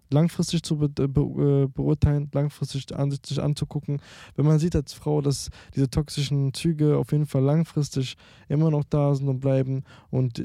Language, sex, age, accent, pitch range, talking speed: German, male, 20-39, German, 125-140 Hz, 165 wpm